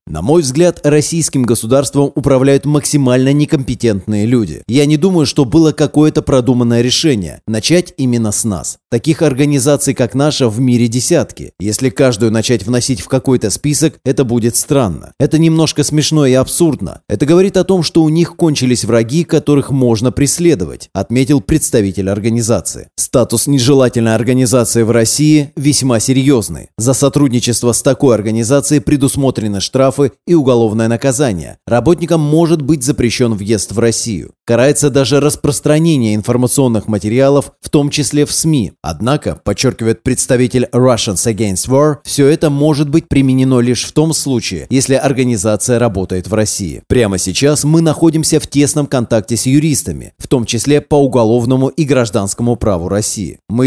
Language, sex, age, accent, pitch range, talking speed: Russian, male, 30-49, native, 115-145 Hz, 145 wpm